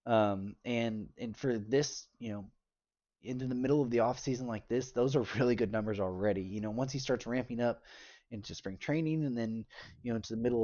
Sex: male